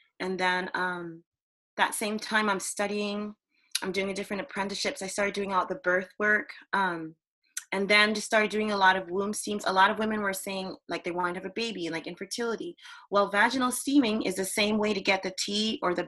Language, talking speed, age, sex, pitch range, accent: English, 225 wpm, 20-39, female, 175-210 Hz, American